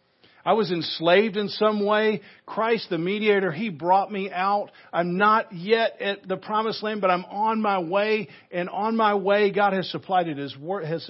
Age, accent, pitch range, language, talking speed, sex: 50-69, American, 150-185 Hz, English, 175 wpm, male